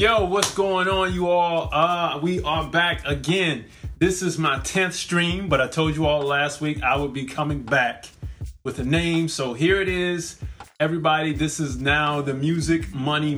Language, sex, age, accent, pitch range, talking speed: English, male, 20-39, American, 145-175 Hz, 190 wpm